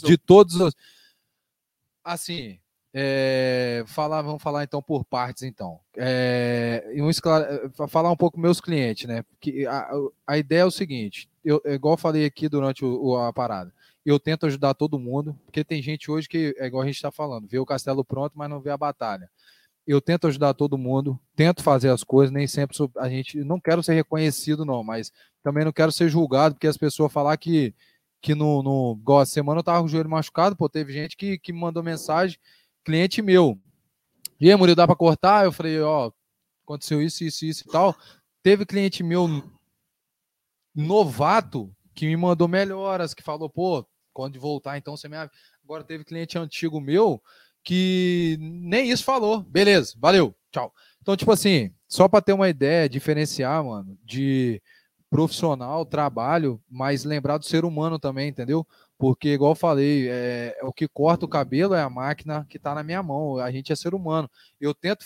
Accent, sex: Brazilian, male